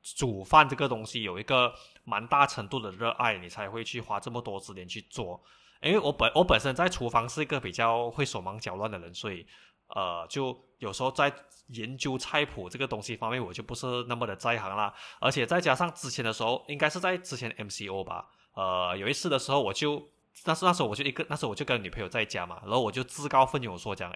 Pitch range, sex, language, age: 115-145 Hz, male, Chinese, 20-39